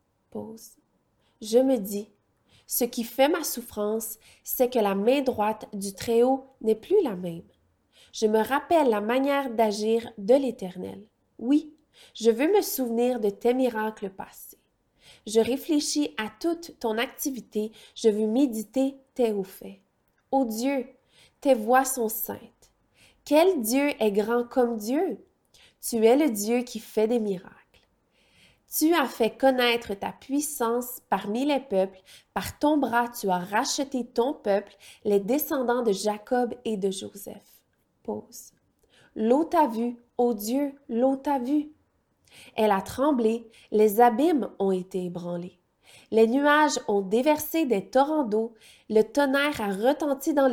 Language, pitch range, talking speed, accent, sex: French, 215-275 Hz, 145 wpm, Canadian, female